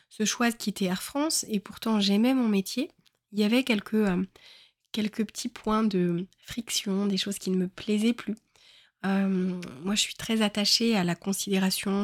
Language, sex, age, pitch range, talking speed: French, female, 20-39, 195-240 Hz, 185 wpm